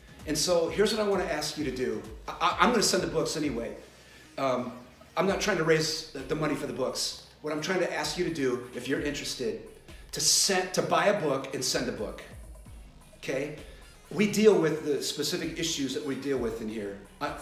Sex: male